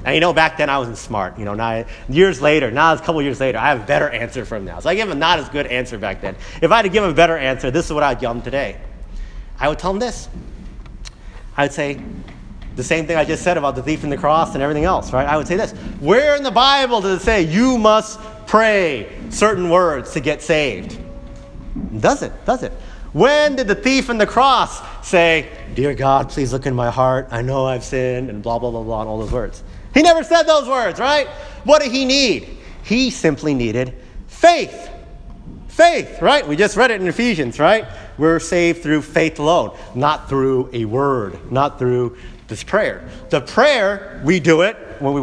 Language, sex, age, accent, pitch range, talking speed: English, male, 30-49, American, 125-210 Hz, 225 wpm